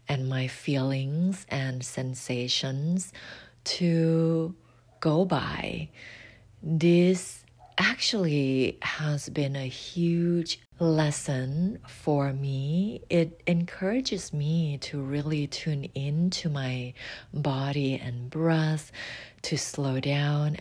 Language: English